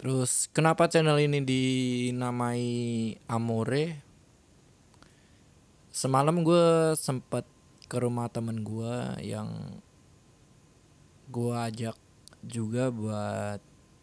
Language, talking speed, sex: Indonesian, 75 wpm, male